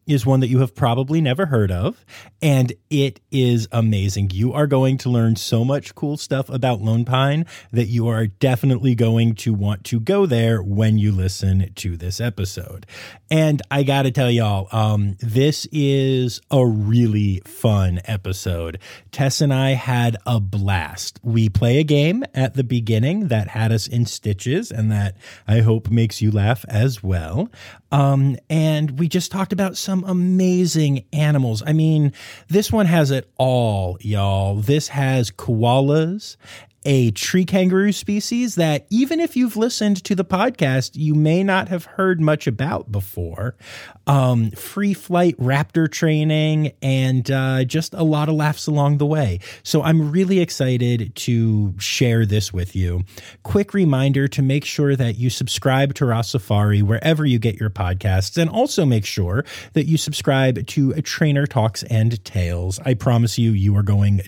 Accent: American